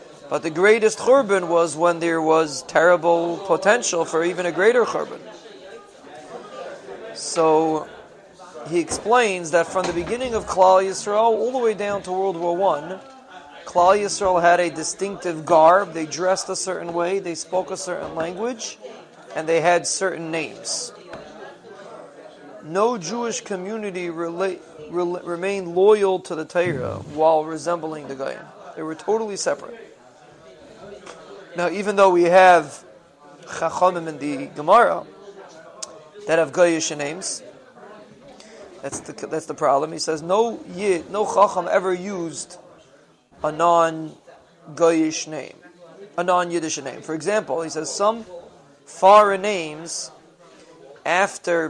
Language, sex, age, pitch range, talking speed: English, male, 40-59, 160-190 Hz, 130 wpm